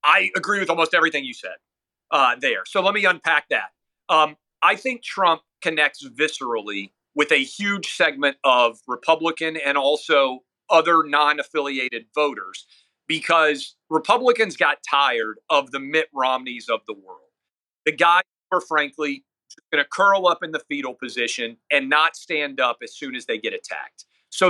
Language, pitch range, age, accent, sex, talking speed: English, 140-205 Hz, 40-59, American, male, 160 wpm